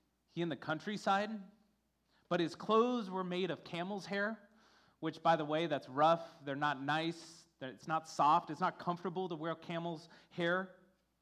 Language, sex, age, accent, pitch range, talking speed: English, male, 30-49, American, 170-225 Hz, 170 wpm